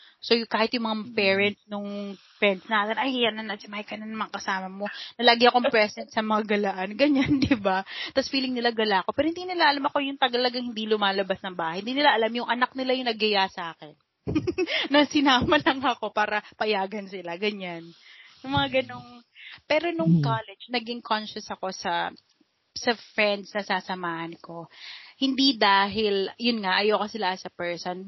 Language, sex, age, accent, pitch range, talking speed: Filipino, female, 30-49, native, 195-250 Hz, 175 wpm